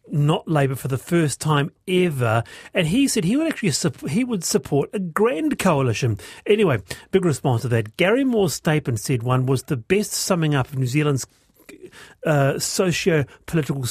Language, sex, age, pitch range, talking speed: English, male, 40-59, 135-180 Hz, 175 wpm